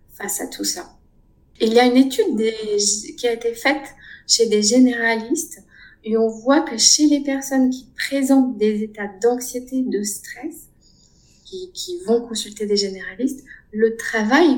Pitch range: 210-275 Hz